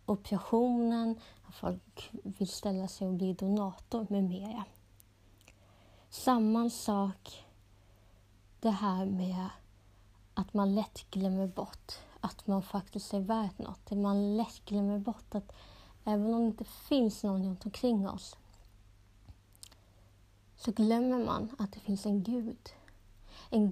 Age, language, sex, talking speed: 30-49, Swedish, female, 125 wpm